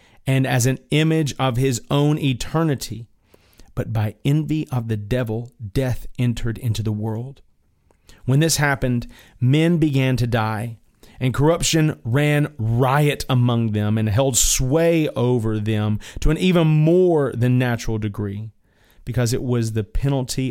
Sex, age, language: male, 40-59, English